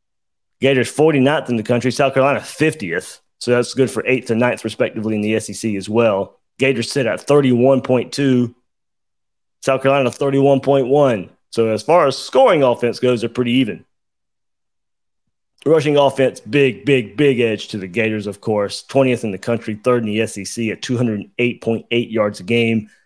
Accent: American